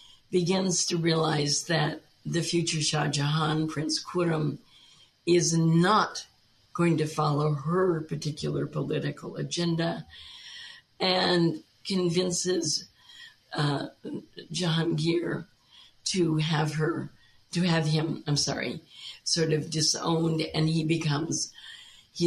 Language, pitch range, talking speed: English, 145-175 Hz, 100 wpm